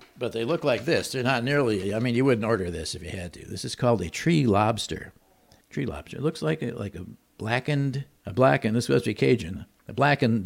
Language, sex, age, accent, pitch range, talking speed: English, male, 50-69, American, 100-125 Hz, 235 wpm